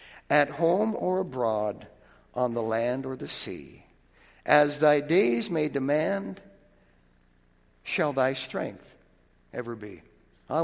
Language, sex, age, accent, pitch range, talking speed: English, male, 60-79, American, 115-140 Hz, 120 wpm